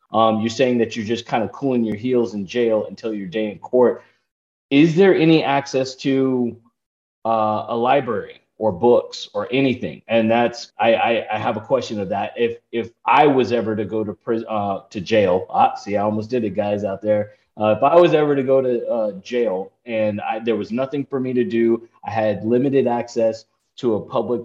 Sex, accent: male, American